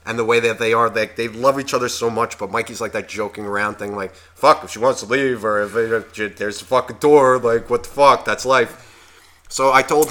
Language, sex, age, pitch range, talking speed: English, male, 30-49, 95-135 Hz, 265 wpm